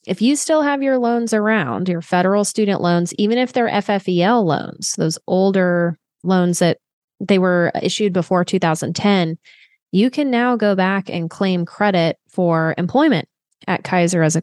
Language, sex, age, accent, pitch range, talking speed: English, female, 20-39, American, 170-205 Hz, 160 wpm